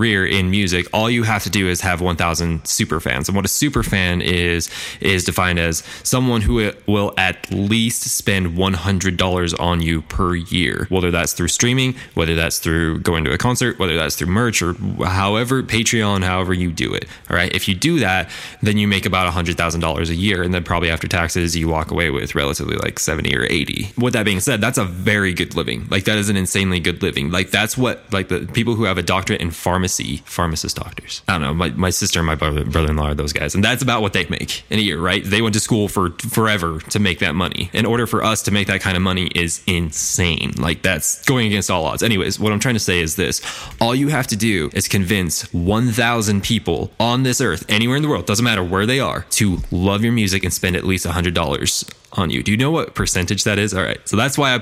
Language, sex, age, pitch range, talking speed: English, male, 20-39, 85-110 Hz, 245 wpm